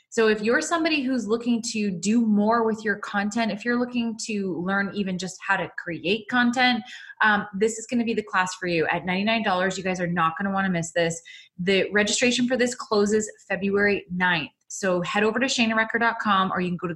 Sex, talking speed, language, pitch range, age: female, 220 wpm, English, 170-215 Hz, 20-39